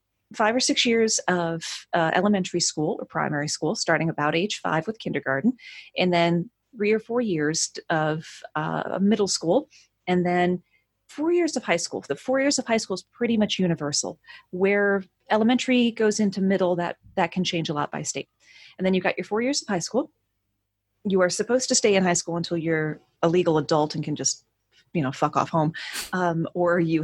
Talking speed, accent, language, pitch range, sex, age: 200 wpm, American, English, 160-205 Hz, female, 30-49